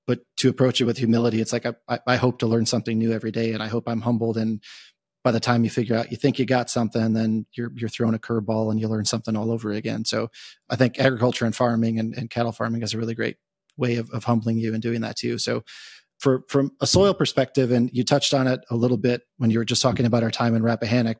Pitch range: 115-125 Hz